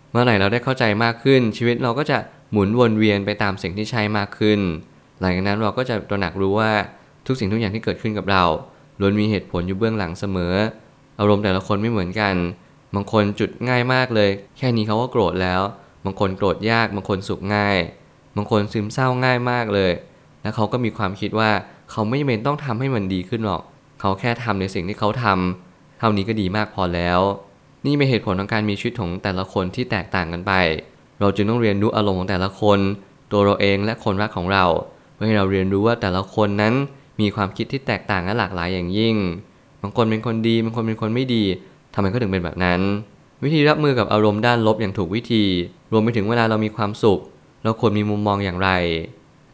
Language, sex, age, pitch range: Thai, male, 20-39, 100-115 Hz